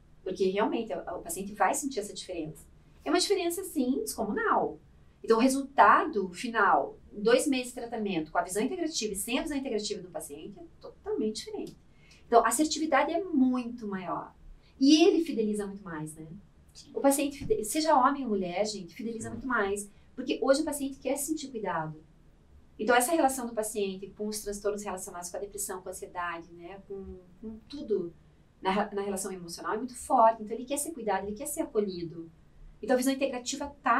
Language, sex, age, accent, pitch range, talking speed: Portuguese, female, 30-49, Brazilian, 195-265 Hz, 185 wpm